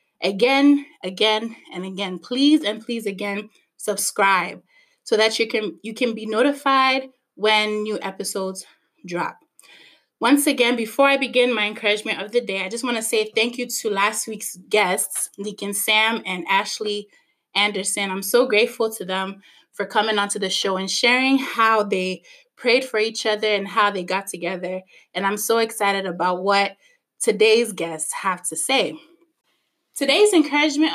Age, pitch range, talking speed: 20-39, 200-265 Hz, 160 wpm